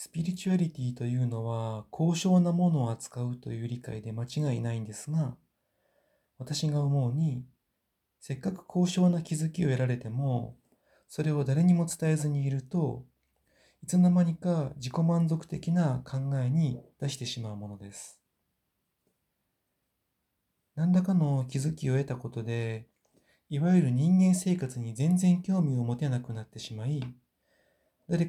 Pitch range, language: 120-160 Hz, Japanese